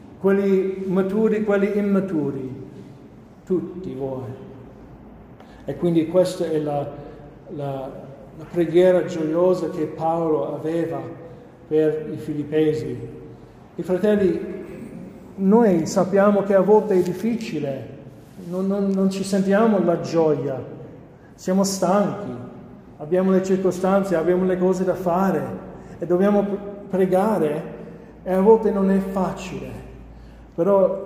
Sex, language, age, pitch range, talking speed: male, Italian, 50-69, 155-195 Hz, 110 wpm